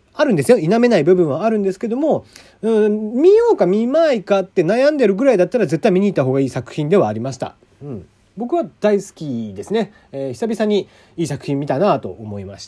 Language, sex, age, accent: Japanese, male, 40-59, native